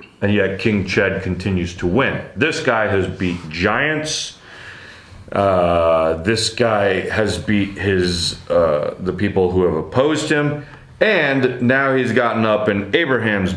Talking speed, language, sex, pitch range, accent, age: 140 wpm, English, male, 95-125 Hz, American, 30-49